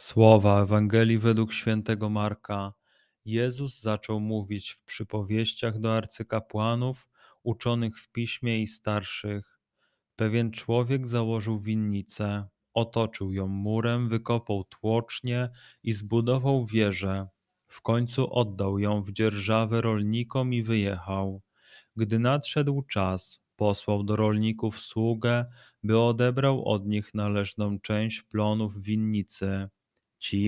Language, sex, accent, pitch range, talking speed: Polish, male, native, 105-115 Hz, 105 wpm